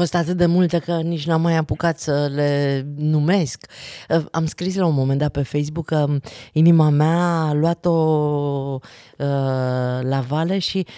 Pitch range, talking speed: 130-165 Hz, 165 wpm